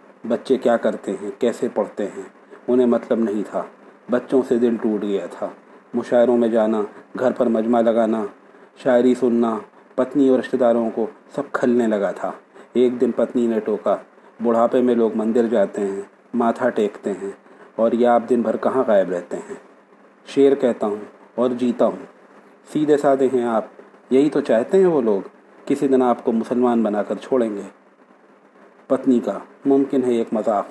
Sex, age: male, 40-59